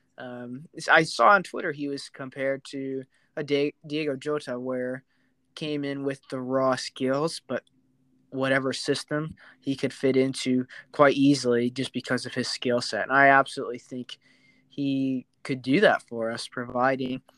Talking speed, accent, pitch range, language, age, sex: 160 wpm, American, 125-140 Hz, English, 20-39, male